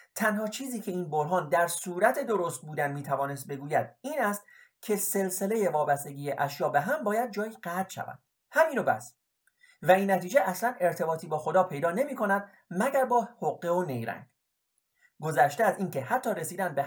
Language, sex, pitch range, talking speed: Persian, male, 140-215 Hz, 165 wpm